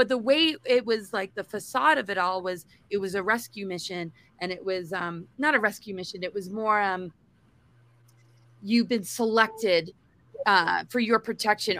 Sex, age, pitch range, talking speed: female, 20-39, 185-240 Hz, 185 wpm